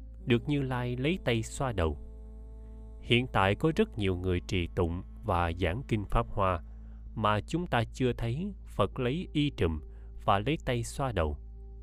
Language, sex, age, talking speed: Vietnamese, male, 20-39, 170 wpm